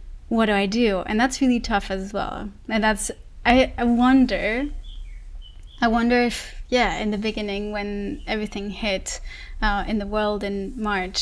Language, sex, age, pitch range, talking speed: English, female, 20-39, 195-225 Hz, 165 wpm